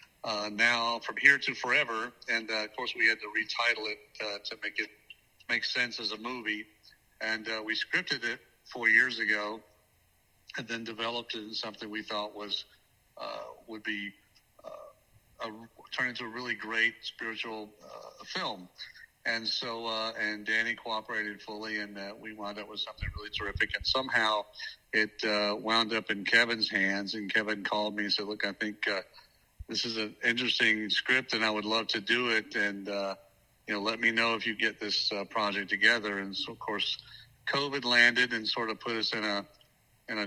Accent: American